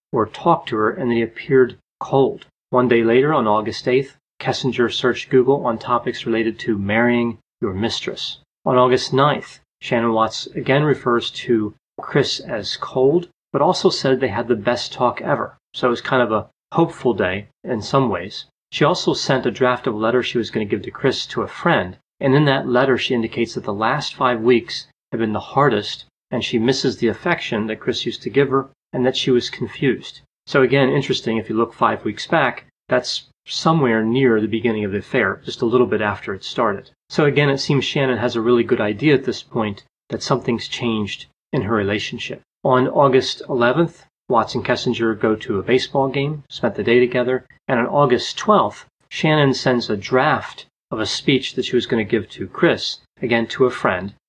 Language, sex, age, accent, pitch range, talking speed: English, male, 30-49, American, 115-135 Hz, 205 wpm